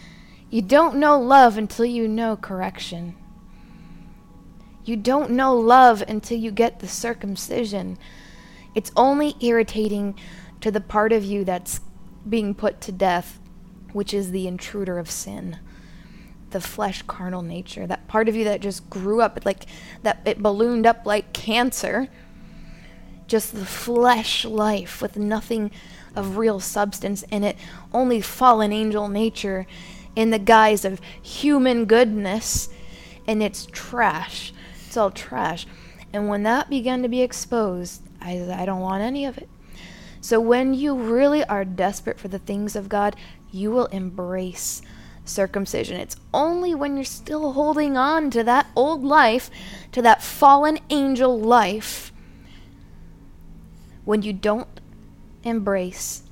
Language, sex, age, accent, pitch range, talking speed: English, female, 20-39, American, 190-240 Hz, 140 wpm